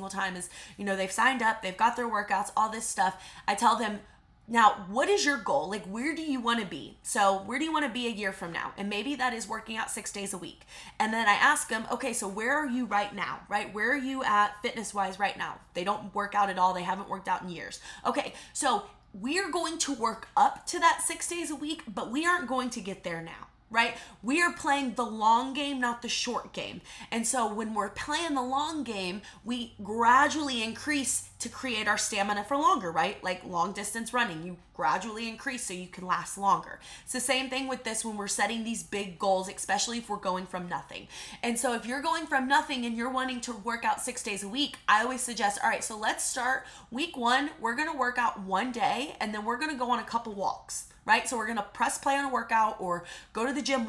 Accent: American